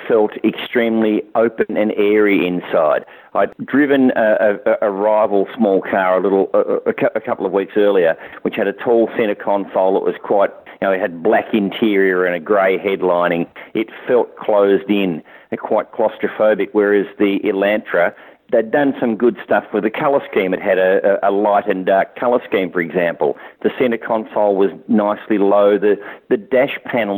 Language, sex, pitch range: English, male, 100-125 Hz